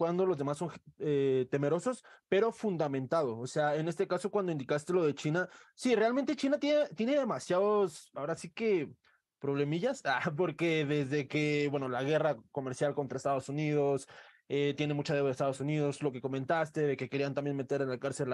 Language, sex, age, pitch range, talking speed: Spanish, male, 20-39, 140-195 Hz, 185 wpm